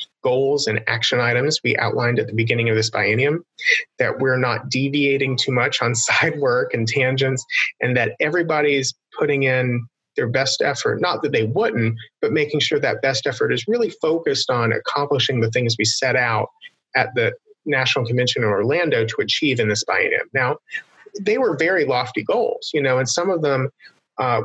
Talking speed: 185 wpm